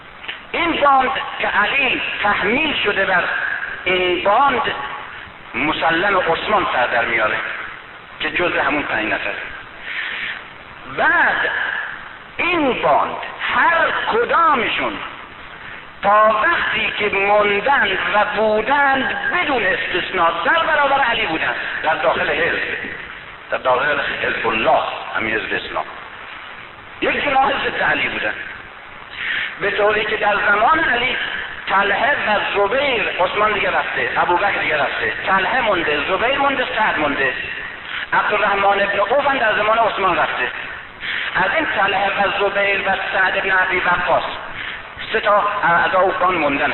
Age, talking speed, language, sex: 60-79, 120 wpm, Persian, male